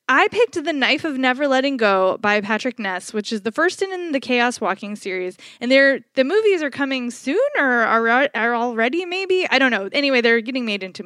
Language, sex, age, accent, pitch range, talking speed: English, female, 20-39, American, 210-270 Hz, 215 wpm